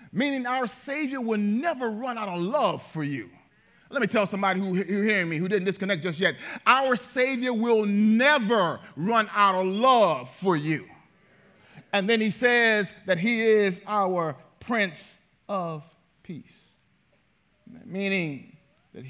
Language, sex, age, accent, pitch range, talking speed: English, male, 40-59, American, 145-215 Hz, 145 wpm